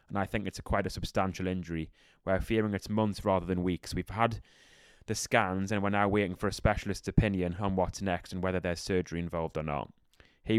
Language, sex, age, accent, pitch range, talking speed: English, male, 20-39, British, 90-100 Hz, 215 wpm